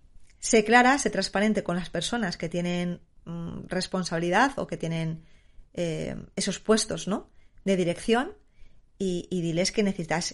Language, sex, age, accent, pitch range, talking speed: Spanish, female, 20-39, Spanish, 175-215 Hz, 140 wpm